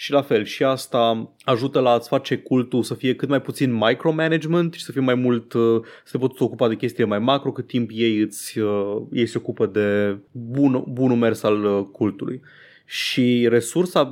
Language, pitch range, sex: Romanian, 110-140 Hz, male